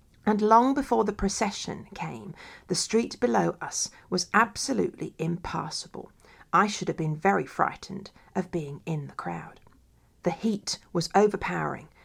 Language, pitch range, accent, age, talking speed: English, 170-215 Hz, British, 40-59, 140 wpm